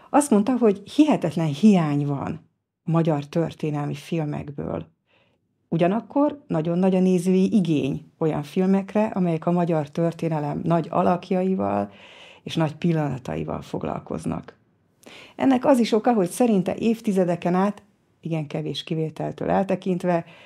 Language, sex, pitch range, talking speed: Hungarian, female, 150-195 Hz, 115 wpm